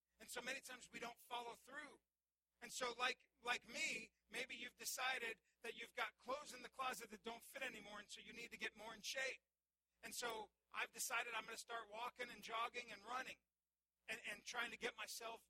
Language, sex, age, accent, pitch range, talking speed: English, male, 40-59, American, 170-240 Hz, 215 wpm